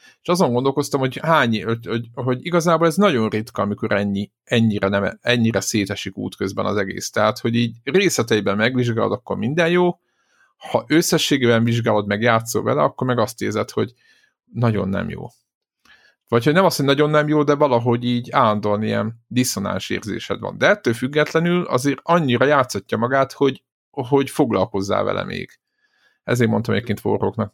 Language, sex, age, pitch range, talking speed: Hungarian, male, 50-69, 105-135 Hz, 165 wpm